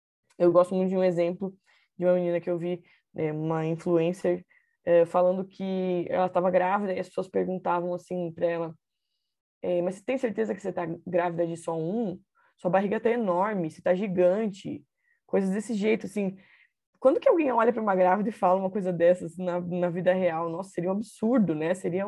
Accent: Brazilian